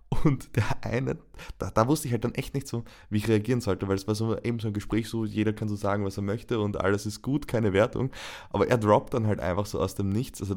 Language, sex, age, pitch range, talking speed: German, male, 20-39, 95-110 Hz, 280 wpm